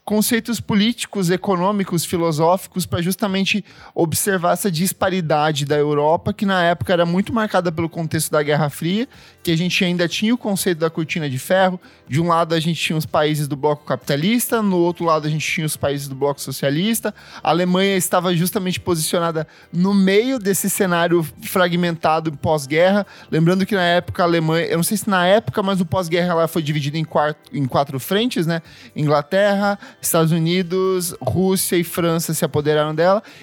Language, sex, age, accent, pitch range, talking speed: Portuguese, male, 10-29, Brazilian, 155-190 Hz, 175 wpm